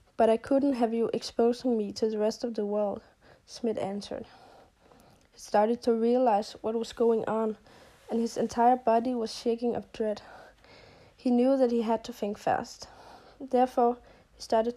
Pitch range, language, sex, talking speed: 215-245 Hz, English, female, 170 wpm